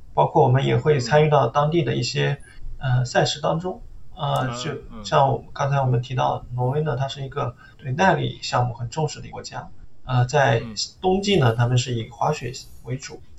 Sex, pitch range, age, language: male, 120-145 Hz, 20-39, Chinese